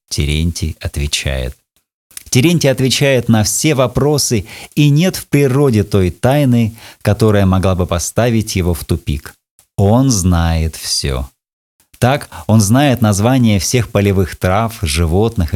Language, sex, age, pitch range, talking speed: Russian, male, 30-49, 85-120 Hz, 120 wpm